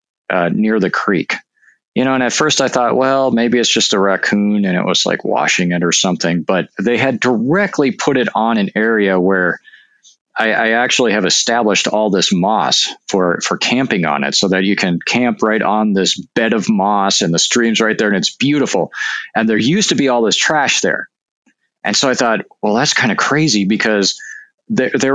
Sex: male